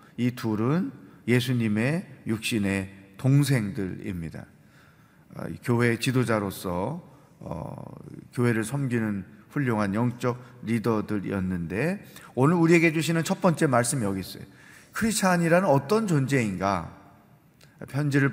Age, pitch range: 40-59, 115-155 Hz